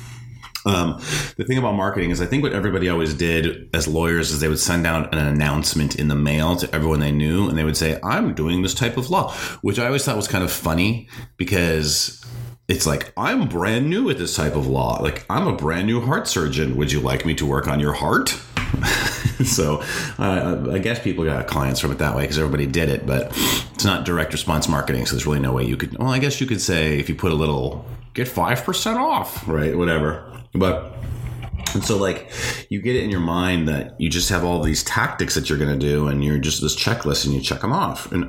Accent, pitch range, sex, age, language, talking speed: American, 75-110 Hz, male, 30-49, English, 235 wpm